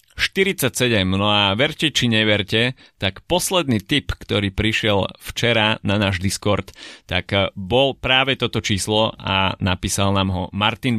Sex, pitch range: male, 95-120 Hz